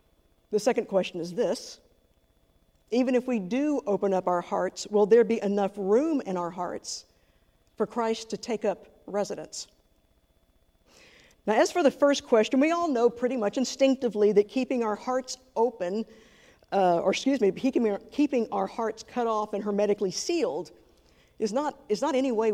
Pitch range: 190-240 Hz